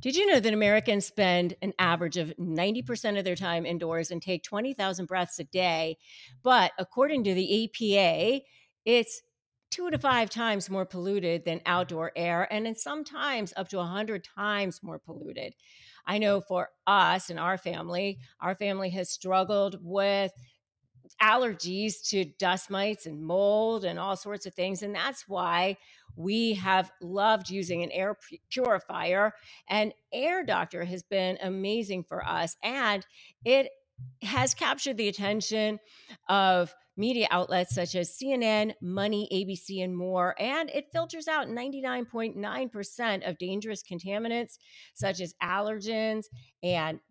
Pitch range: 180-215 Hz